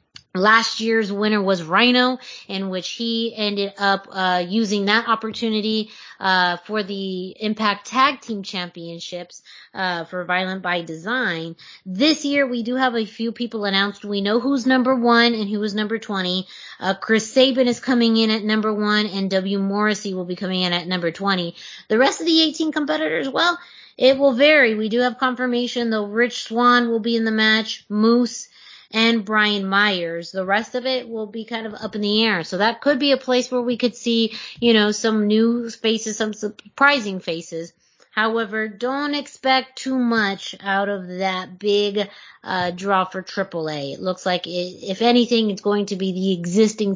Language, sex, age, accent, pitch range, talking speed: English, female, 20-39, American, 190-235 Hz, 185 wpm